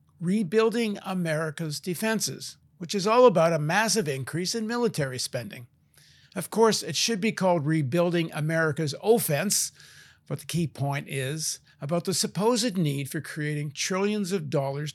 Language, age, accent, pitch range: English, 50-69, American, 145-185 Hz